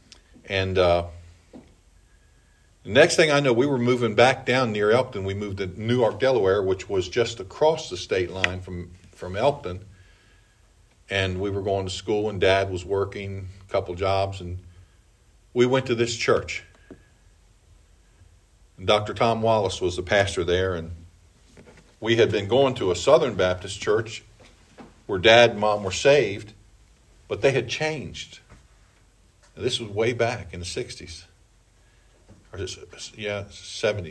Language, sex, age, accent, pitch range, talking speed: English, male, 50-69, American, 95-115 Hz, 150 wpm